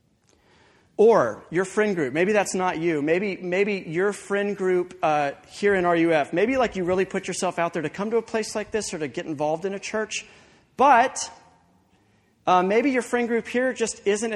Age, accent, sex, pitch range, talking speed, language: 40-59, American, male, 150-210 Hz, 200 wpm, English